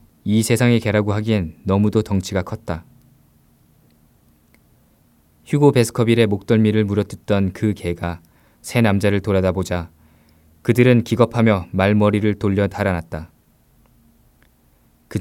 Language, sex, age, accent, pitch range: Korean, male, 20-39, native, 95-115 Hz